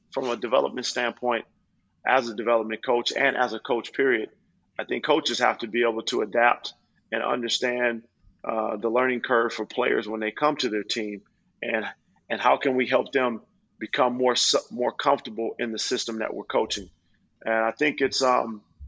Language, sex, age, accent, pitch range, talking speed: Italian, male, 30-49, American, 110-125 Hz, 190 wpm